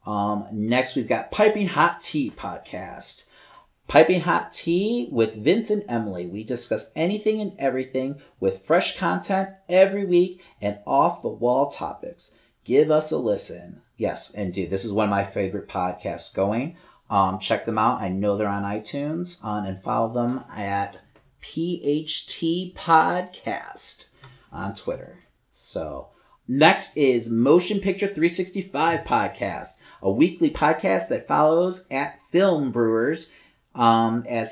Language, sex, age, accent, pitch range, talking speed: English, male, 40-59, American, 110-170 Hz, 130 wpm